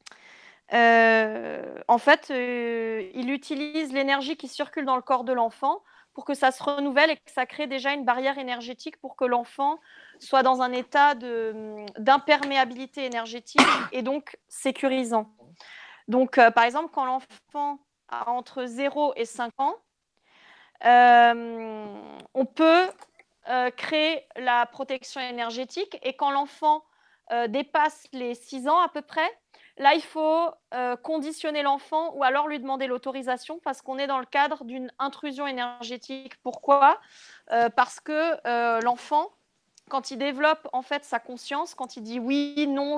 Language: French